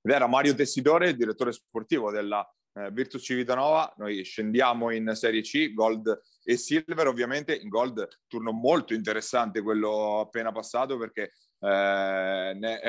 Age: 30-49